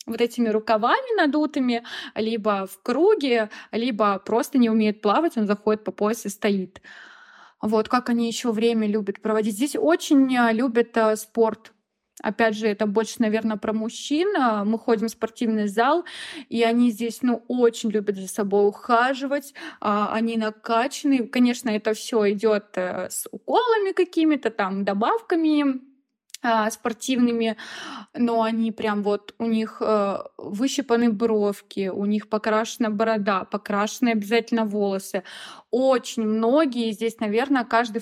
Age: 20-39